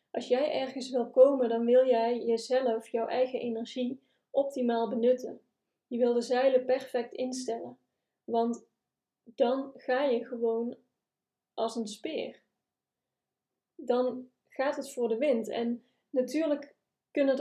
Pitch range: 235-255 Hz